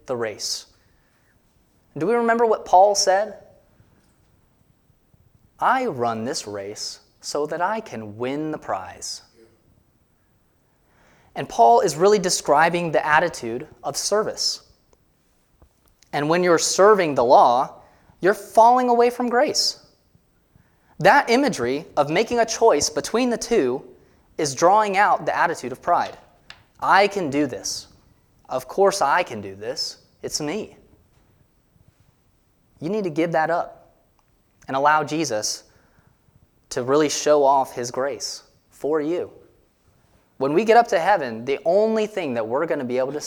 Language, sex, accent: English, male, American